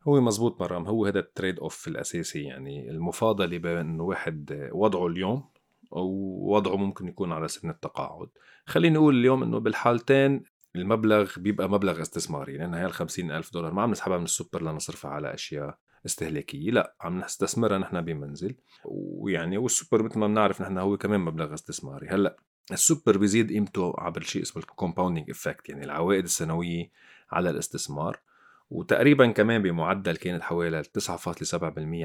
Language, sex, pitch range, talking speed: Arabic, male, 85-110 Hz, 145 wpm